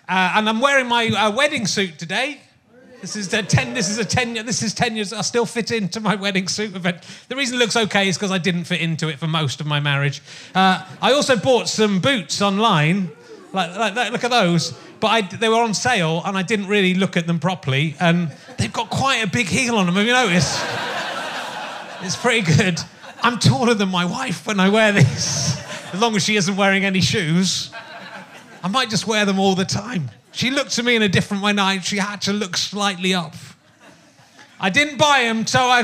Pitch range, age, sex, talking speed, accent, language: 180-230 Hz, 30-49, male, 225 wpm, British, English